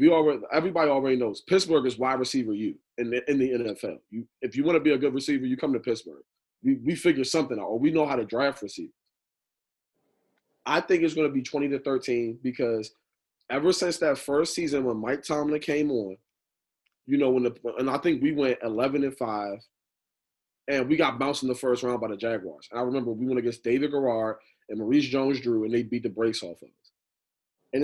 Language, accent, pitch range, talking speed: English, American, 120-155 Hz, 220 wpm